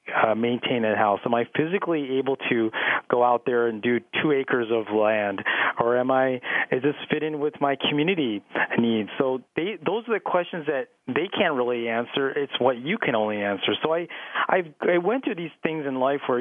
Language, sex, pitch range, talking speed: English, male, 115-150 Hz, 210 wpm